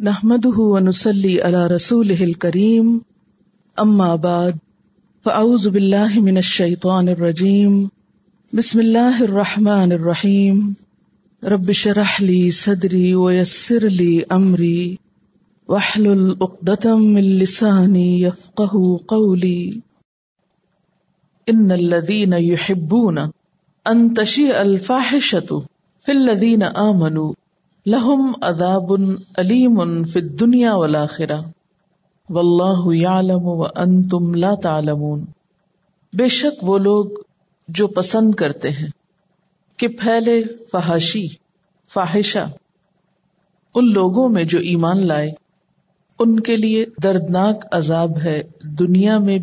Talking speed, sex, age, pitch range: 85 wpm, female, 50-69, 175-205 Hz